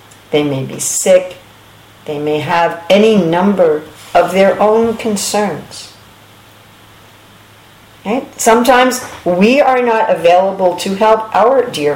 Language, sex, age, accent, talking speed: English, female, 50-69, American, 110 wpm